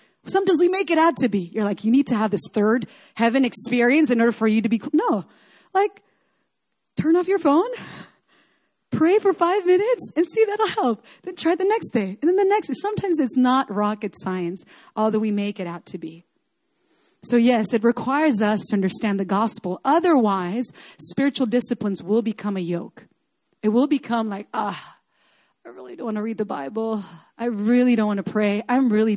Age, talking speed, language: 30-49, 195 wpm, English